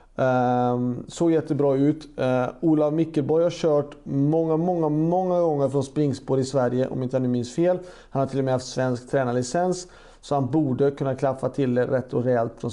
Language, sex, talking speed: Swedish, male, 190 wpm